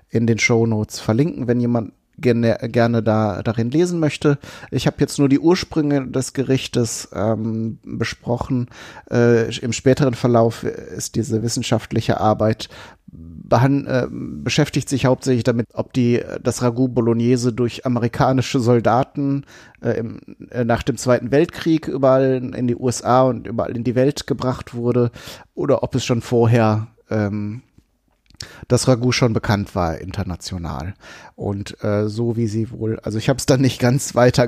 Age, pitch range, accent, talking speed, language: 30-49, 105-130 Hz, German, 155 wpm, German